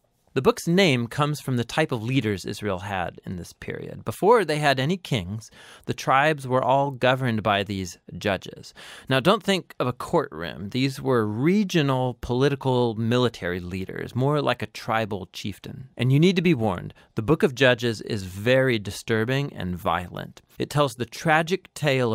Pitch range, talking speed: 105-140 Hz, 175 wpm